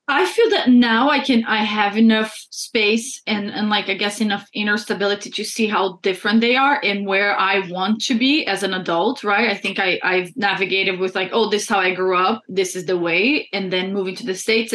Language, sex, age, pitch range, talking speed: English, female, 20-39, 190-235 Hz, 230 wpm